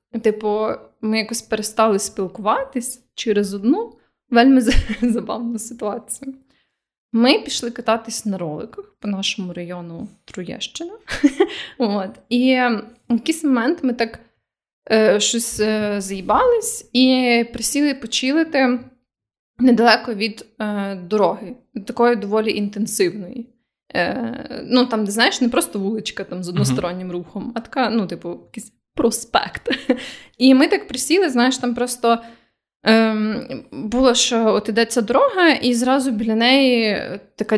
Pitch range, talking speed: 210-260 Hz, 110 wpm